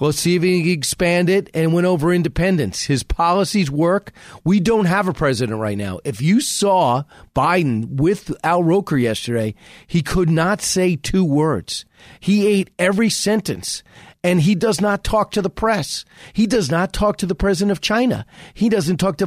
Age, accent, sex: 40-59, American, male